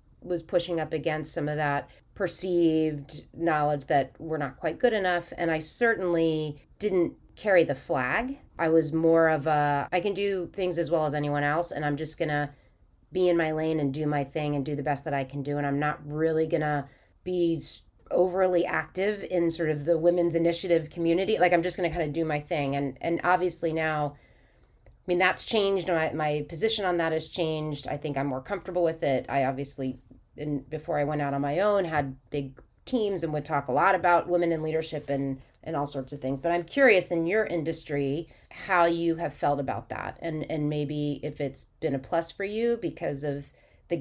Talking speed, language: 215 wpm, English